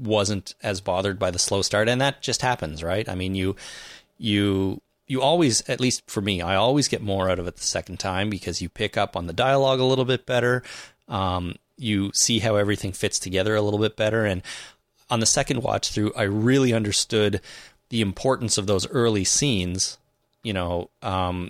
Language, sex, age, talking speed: English, male, 30-49, 195 wpm